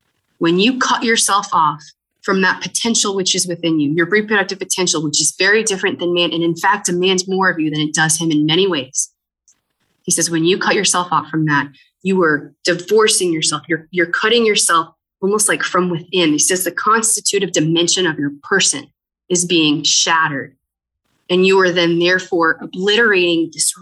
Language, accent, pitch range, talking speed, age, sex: English, American, 165-205 Hz, 185 wpm, 20-39, female